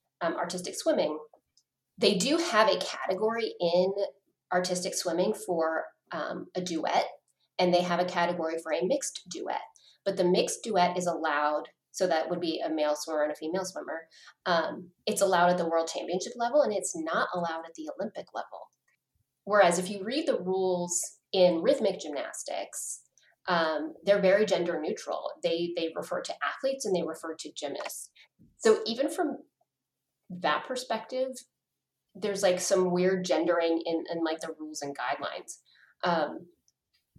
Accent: American